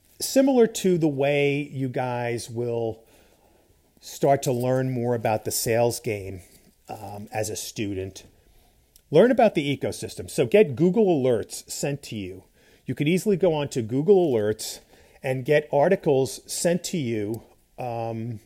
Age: 40-59